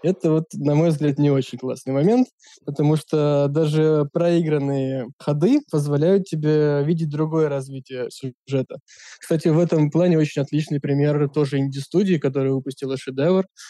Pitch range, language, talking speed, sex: 140-165 Hz, Russian, 140 wpm, male